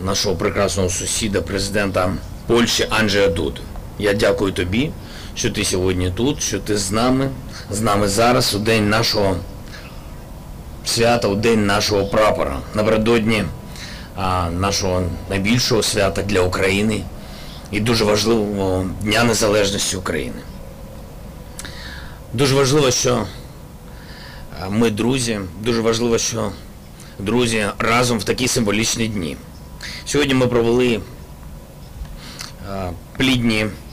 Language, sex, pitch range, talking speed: Polish, male, 95-115 Hz, 105 wpm